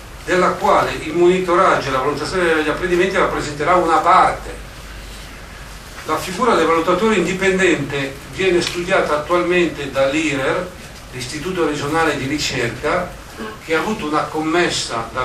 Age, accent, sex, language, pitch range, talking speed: 40-59, native, male, Italian, 135-175 Hz, 120 wpm